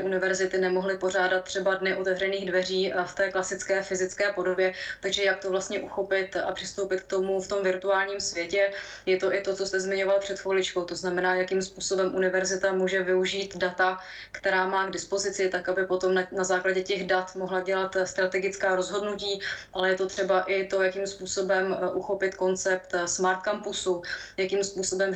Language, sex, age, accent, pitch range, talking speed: Czech, female, 20-39, native, 185-195 Hz, 170 wpm